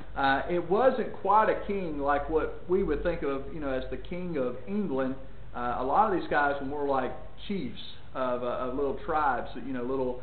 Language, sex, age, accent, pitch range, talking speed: English, male, 40-59, American, 130-175 Hz, 215 wpm